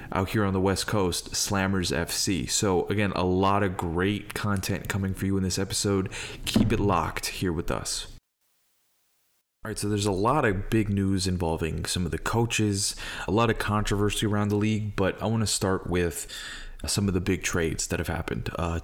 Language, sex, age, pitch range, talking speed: English, male, 30-49, 90-105 Hz, 200 wpm